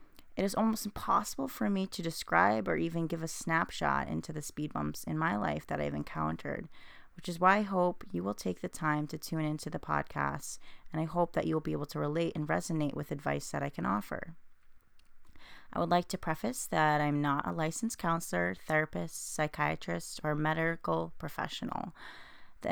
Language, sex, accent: English, female, American